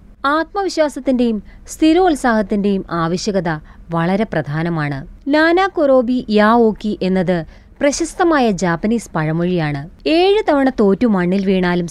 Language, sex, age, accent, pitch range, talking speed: Malayalam, female, 20-39, native, 170-275 Hz, 85 wpm